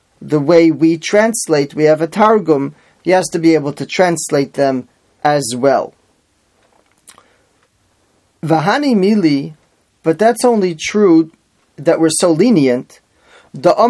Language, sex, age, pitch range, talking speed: English, male, 30-49, 150-190 Hz, 125 wpm